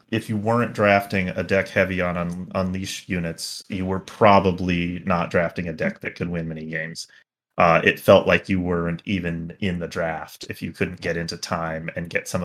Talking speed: 205 wpm